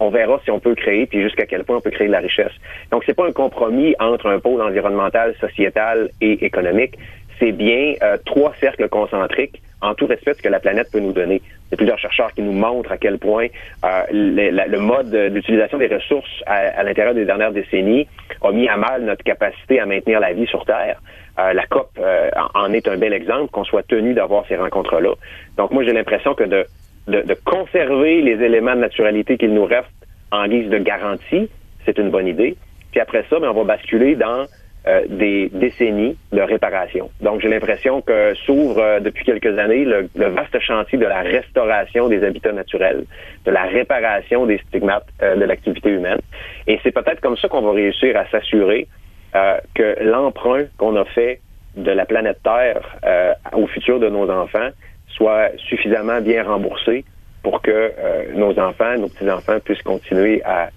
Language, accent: French, Canadian